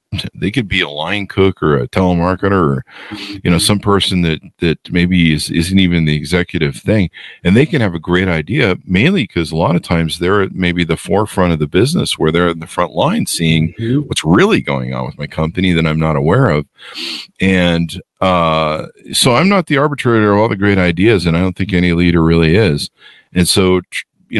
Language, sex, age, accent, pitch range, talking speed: English, male, 50-69, American, 80-100 Hz, 205 wpm